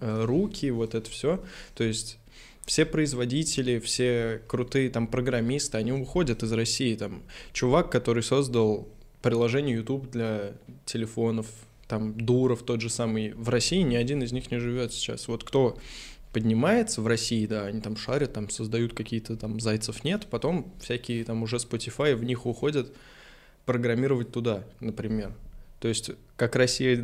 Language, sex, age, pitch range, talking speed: Russian, male, 20-39, 110-125 Hz, 150 wpm